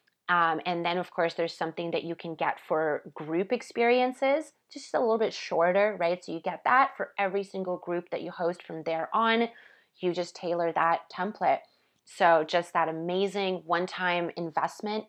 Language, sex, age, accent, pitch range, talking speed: English, female, 20-39, American, 170-195 Hz, 180 wpm